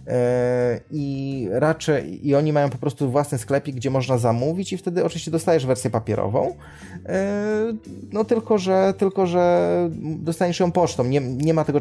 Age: 20-39